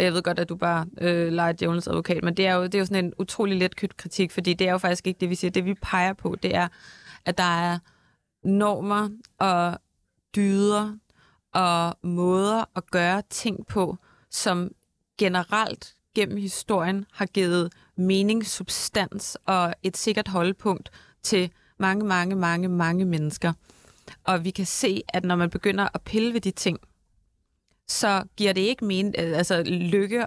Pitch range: 180-205 Hz